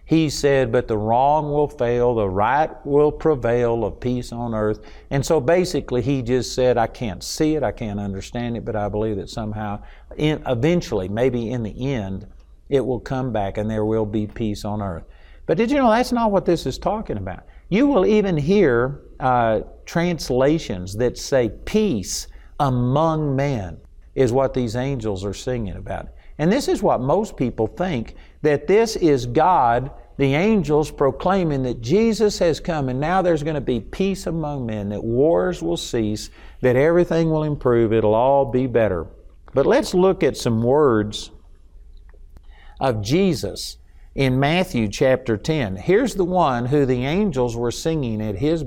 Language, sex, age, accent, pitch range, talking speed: English, male, 50-69, American, 110-160 Hz, 175 wpm